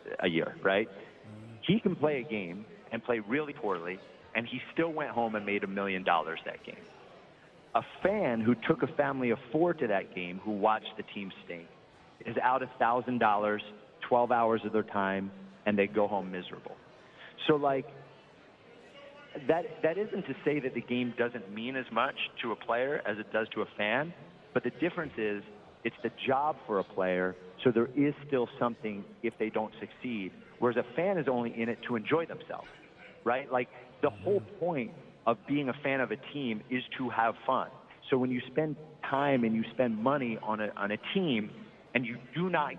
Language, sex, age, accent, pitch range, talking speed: English, male, 40-59, American, 110-140 Hz, 200 wpm